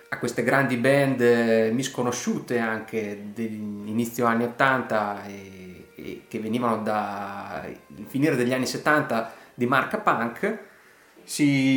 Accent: native